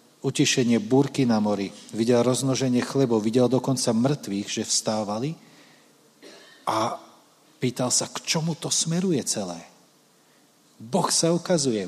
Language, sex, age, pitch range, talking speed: Slovak, male, 40-59, 115-145 Hz, 115 wpm